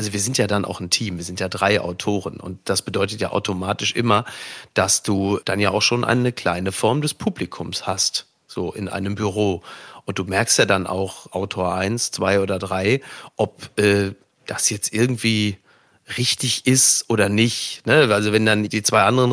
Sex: male